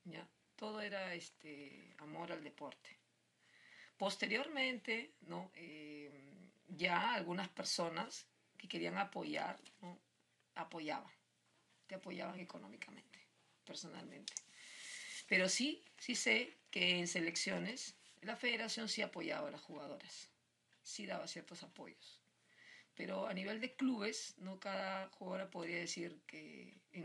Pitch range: 175-220 Hz